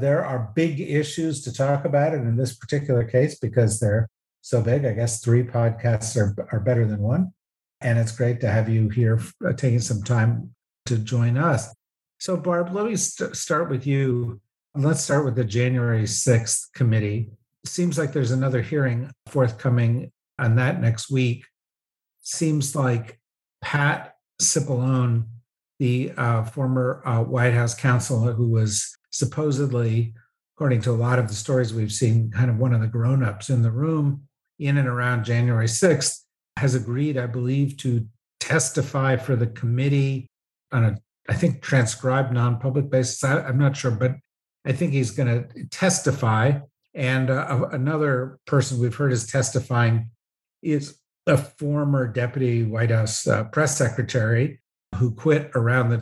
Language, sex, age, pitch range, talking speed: English, male, 50-69, 115-140 Hz, 160 wpm